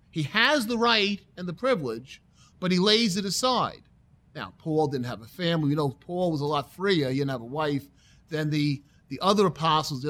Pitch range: 145-195 Hz